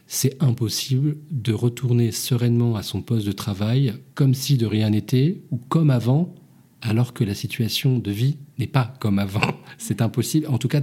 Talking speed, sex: 185 wpm, male